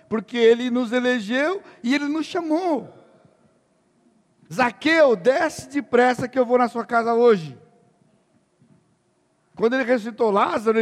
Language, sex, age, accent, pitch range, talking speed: Portuguese, male, 60-79, Brazilian, 195-280 Hz, 120 wpm